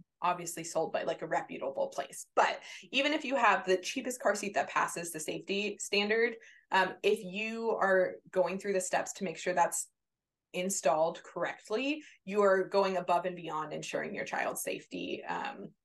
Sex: female